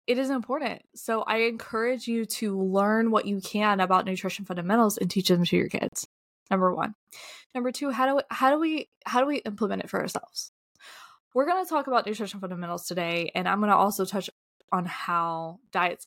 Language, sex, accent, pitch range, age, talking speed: English, female, American, 190-240 Hz, 20-39, 205 wpm